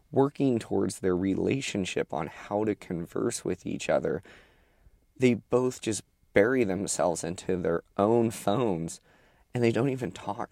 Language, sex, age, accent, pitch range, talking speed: English, male, 20-39, American, 95-120 Hz, 145 wpm